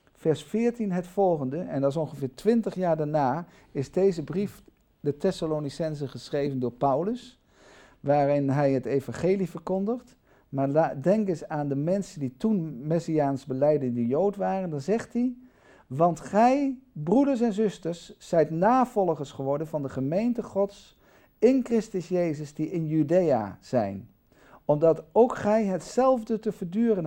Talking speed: 150 wpm